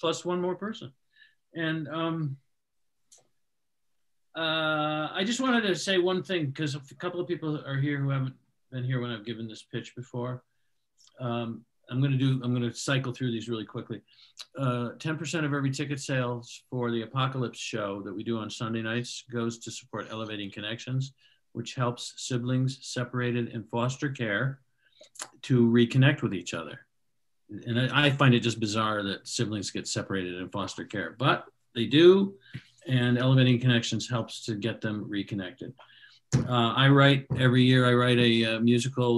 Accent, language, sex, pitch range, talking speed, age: American, English, male, 115-130 Hz, 170 wpm, 50-69